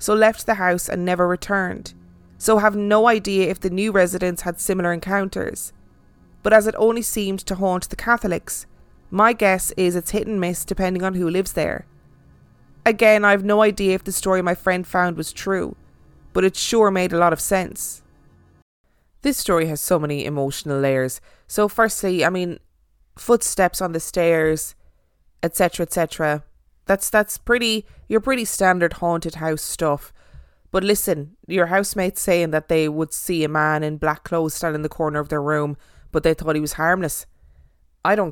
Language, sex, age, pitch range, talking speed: English, female, 20-39, 150-195 Hz, 180 wpm